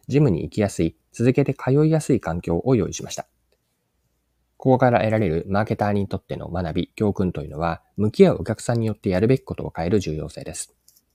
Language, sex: Japanese, male